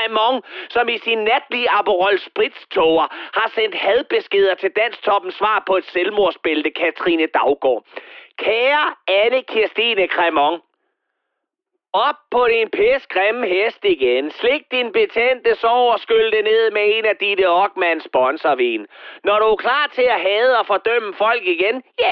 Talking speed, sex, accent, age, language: 140 wpm, male, native, 30-49, Danish